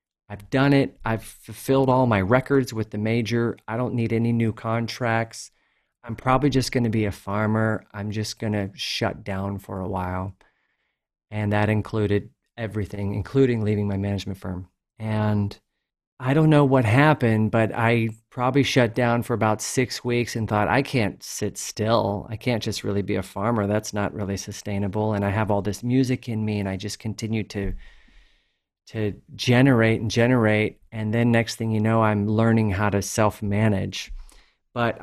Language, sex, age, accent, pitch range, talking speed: English, male, 40-59, American, 105-120 Hz, 180 wpm